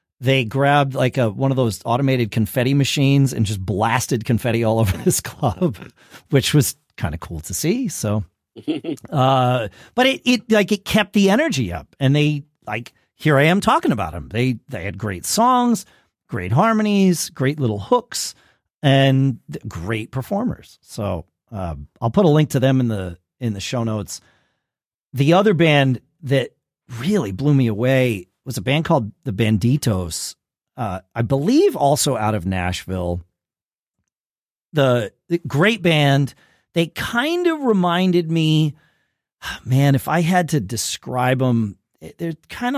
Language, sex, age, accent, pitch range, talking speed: English, male, 40-59, American, 110-165 Hz, 155 wpm